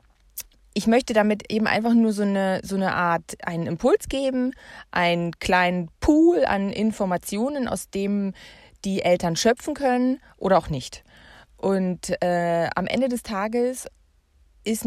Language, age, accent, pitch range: German, 30-49, German, 180-230 Hz